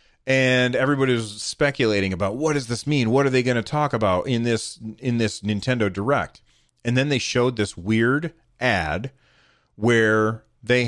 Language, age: English, 30-49